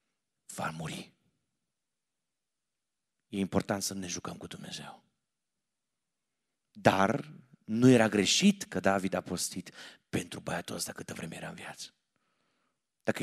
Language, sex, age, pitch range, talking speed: Romanian, male, 40-59, 95-125 Hz, 120 wpm